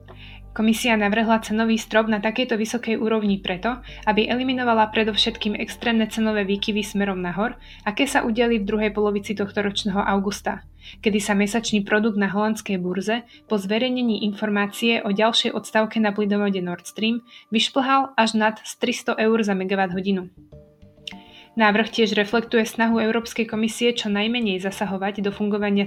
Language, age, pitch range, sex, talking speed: Slovak, 20-39, 205-230 Hz, female, 140 wpm